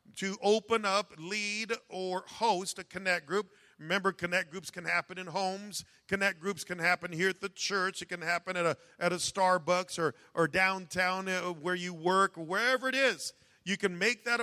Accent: American